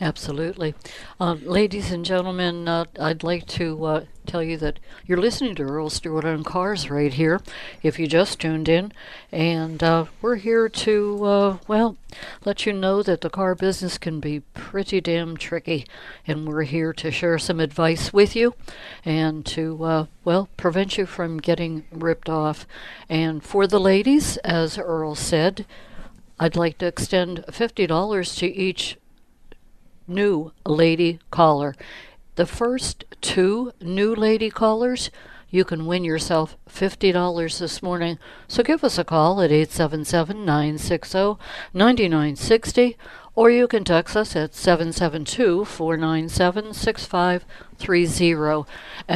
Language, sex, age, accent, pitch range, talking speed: English, female, 60-79, American, 160-195 Hz, 130 wpm